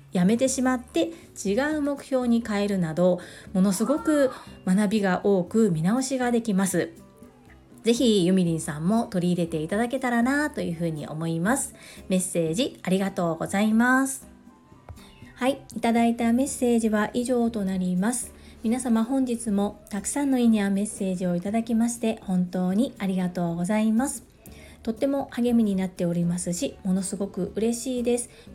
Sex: female